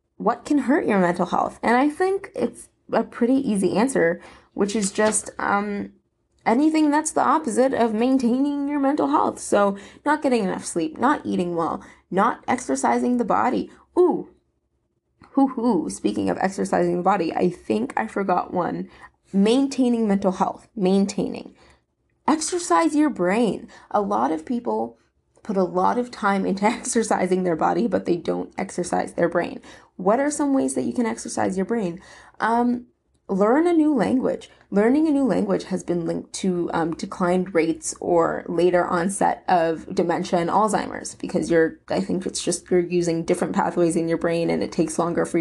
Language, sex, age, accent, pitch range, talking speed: English, female, 20-39, American, 175-245 Hz, 170 wpm